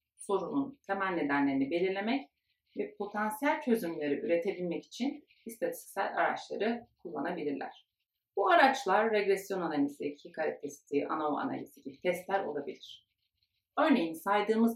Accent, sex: native, female